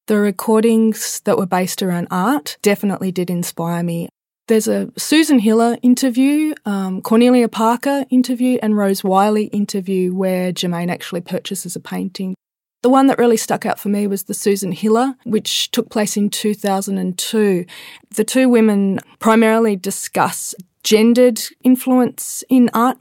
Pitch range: 185-225 Hz